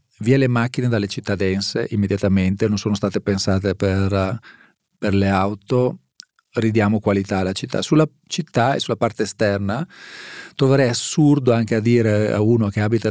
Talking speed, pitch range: 155 wpm, 100-120 Hz